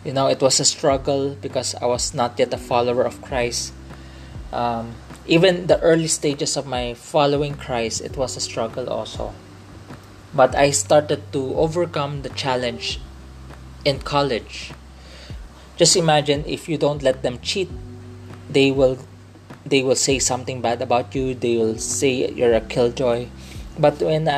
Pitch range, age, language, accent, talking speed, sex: 100-145 Hz, 20-39, English, Filipino, 155 wpm, male